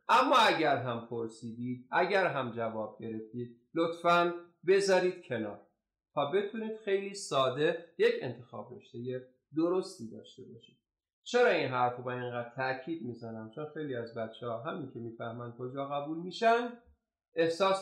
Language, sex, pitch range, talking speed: Persian, male, 115-185 Hz, 140 wpm